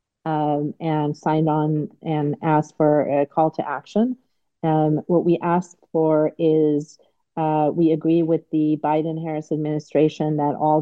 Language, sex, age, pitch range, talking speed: English, female, 40-59, 150-160 Hz, 145 wpm